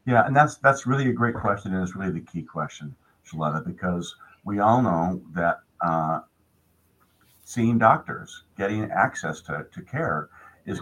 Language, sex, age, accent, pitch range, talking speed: English, male, 50-69, American, 90-125 Hz, 160 wpm